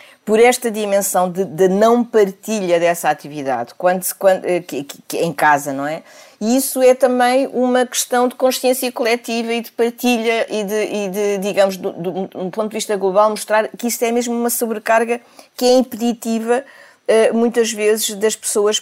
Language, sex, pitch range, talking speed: Portuguese, female, 175-225 Hz, 170 wpm